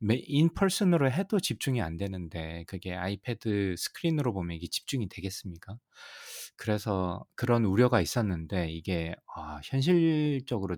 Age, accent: 20-39, native